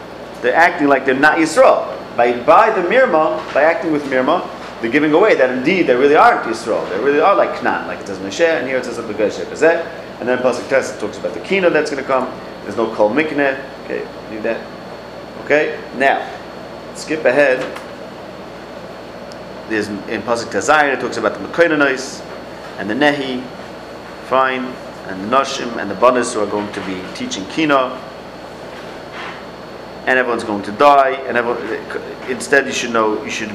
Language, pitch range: English, 110-145 Hz